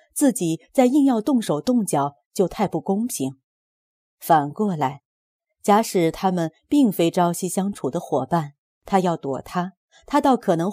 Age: 30-49